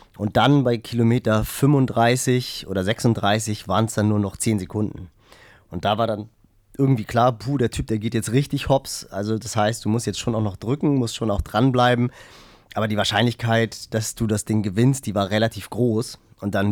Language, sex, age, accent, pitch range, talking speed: German, male, 30-49, German, 105-120 Hz, 195 wpm